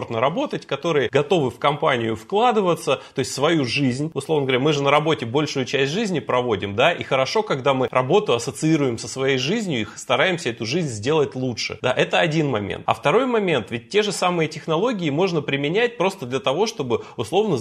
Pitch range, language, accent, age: 130-170 Hz, Russian, native, 20-39